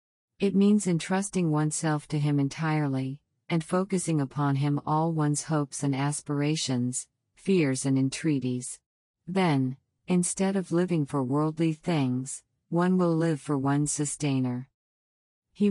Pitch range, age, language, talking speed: 130-160 Hz, 50-69, Urdu, 125 wpm